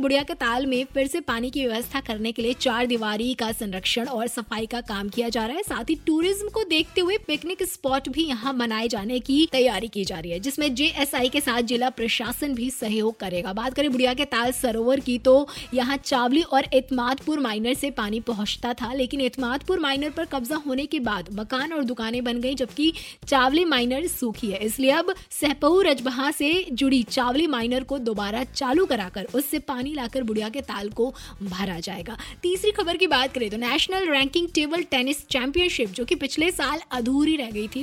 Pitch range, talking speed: 245-305 Hz, 170 wpm